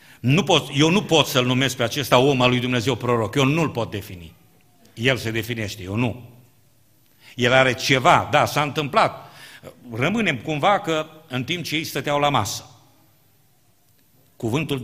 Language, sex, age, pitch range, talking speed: Romanian, male, 50-69, 105-125 Hz, 155 wpm